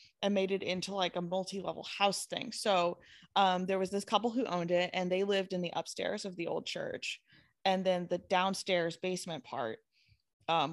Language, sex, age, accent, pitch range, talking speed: English, female, 20-39, American, 175-240 Hz, 195 wpm